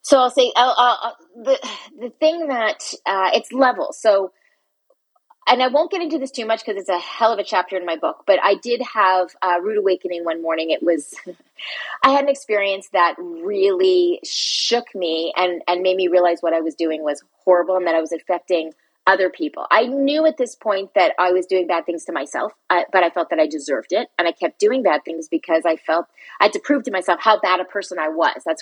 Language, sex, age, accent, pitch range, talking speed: English, female, 30-49, American, 175-265 Hz, 230 wpm